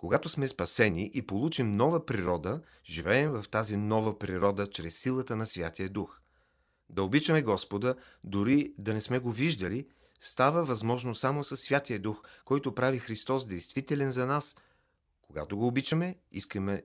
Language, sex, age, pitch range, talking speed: Bulgarian, male, 40-59, 95-130 Hz, 150 wpm